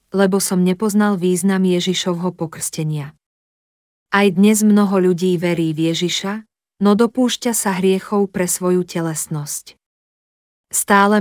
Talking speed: 110 wpm